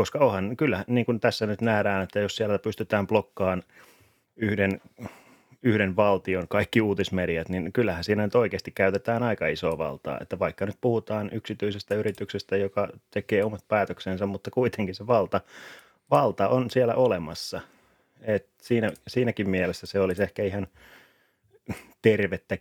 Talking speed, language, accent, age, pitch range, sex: 140 wpm, Finnish, native, 30-49, 90-110 Hz, male